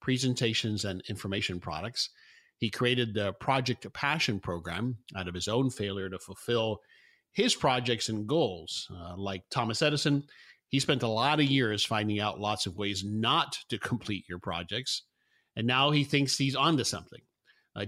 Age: 50-69